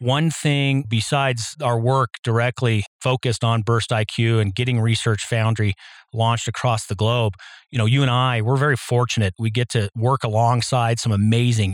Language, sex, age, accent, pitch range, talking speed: English, male, 40-59, American, 115-135 Hz, 170 wpm